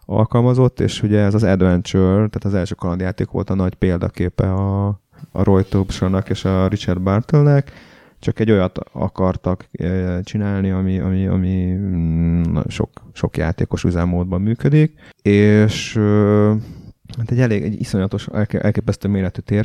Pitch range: 95-110 Hz